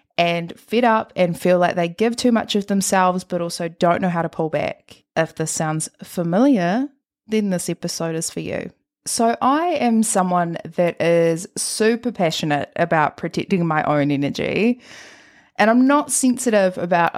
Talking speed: 170 wpm